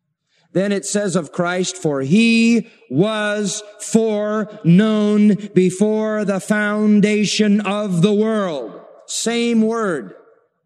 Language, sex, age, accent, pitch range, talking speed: English, male, 40-59, American, 175-270 Hz, 95 wpm